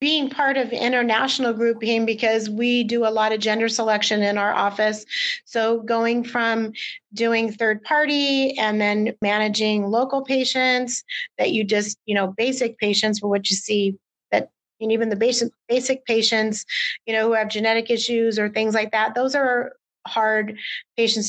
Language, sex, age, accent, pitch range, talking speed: English, female, 30-49, American, 220-250 Hz, 165 wpm